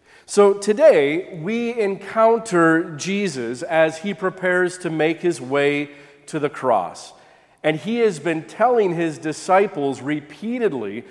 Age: 40-59